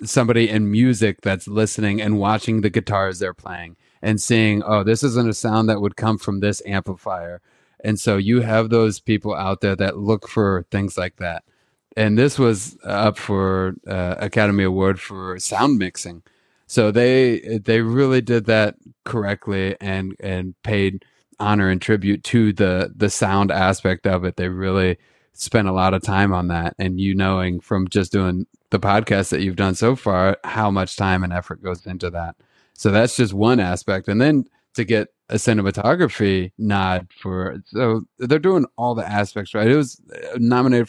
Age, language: 30-49, English